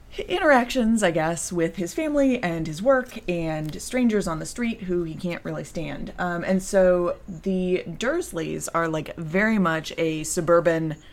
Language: English